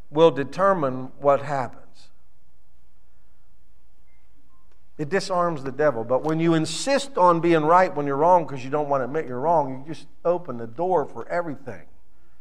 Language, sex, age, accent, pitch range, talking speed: English, male, 50-69, American, 110-165 Hz, 160 wpm